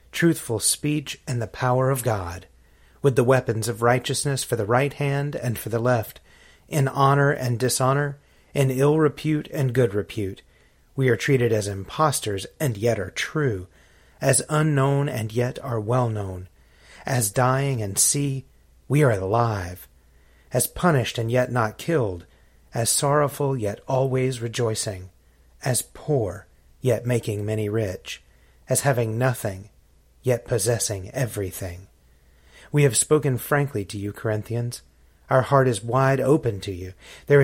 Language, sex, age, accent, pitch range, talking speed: English, male, 30-49, American, 105-140 Hz, 145 wpm